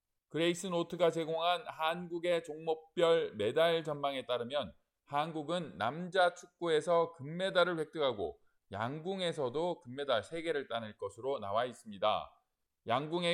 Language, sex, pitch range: Korean, male, 140-180 Hz